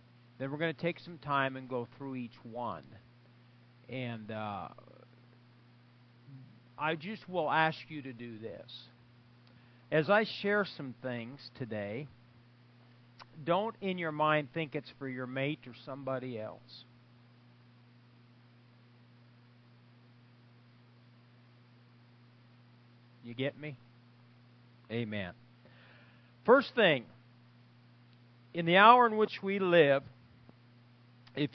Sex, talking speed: male, 105 wpm